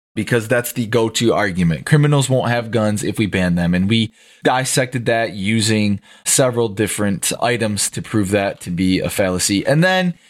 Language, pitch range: English, 105-135 Hz